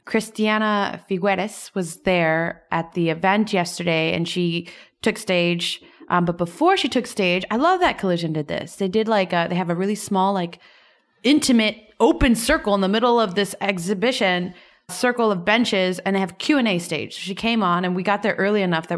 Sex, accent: female, American